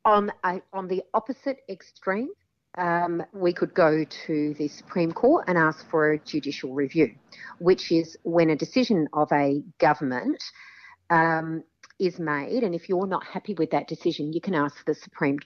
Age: 50-69